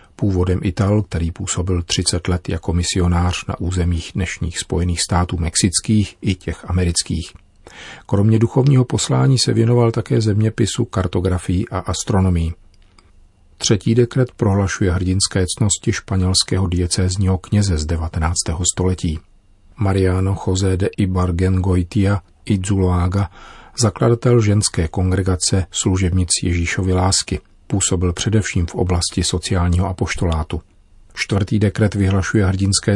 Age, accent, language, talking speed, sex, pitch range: 40-59, native, Czech, 110 wpm, male, 90-100 Hz